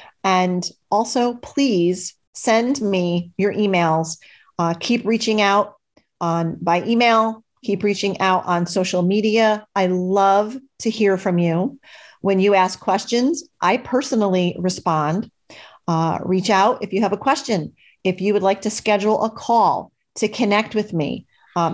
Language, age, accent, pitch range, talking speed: English, 40-59, American, 170-215 Hz, 150 wpm